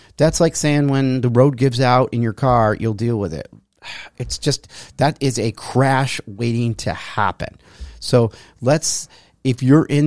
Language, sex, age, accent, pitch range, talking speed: English, male, 40-59, American, 110-140 Hz, 175 wpm